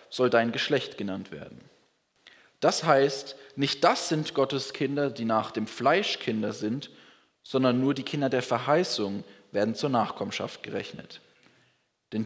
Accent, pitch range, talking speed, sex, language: German, 130-170 Hz, 140 wpm, male, German